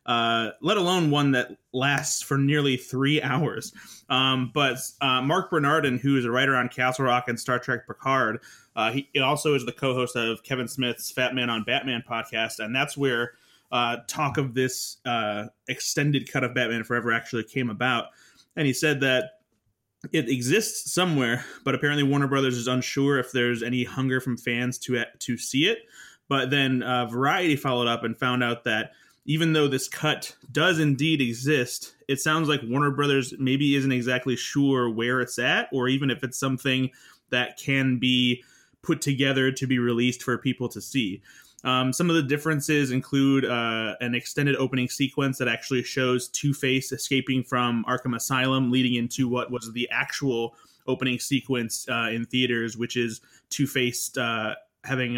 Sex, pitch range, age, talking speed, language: male, 120-140 Hz, 20-39, 175 wpm, English